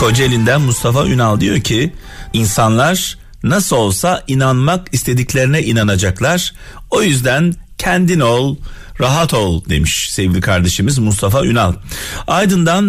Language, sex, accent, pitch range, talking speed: Turkish, male, native, 110-170 Hz, 110 wpm